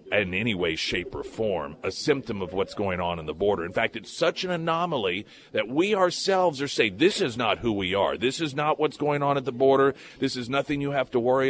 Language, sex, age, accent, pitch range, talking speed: English, male, 40-59, American, 110-150 Hz, 250 wpm